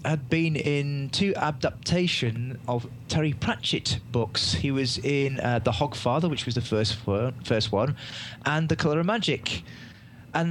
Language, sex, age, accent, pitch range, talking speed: English, male, 30-49, British, 115-140 Hz, 160 wpm